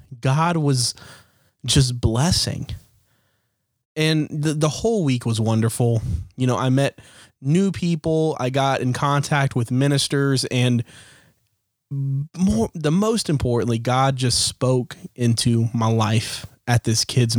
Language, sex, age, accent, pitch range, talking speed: English, male, 20-39, American, 115-140 Hz, 130 wpm